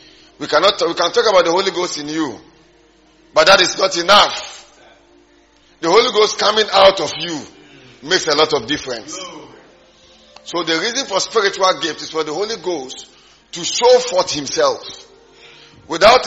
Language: English